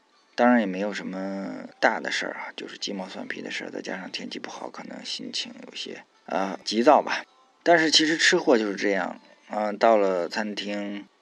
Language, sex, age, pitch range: Chinese, male, 20-39, 95-110 Hz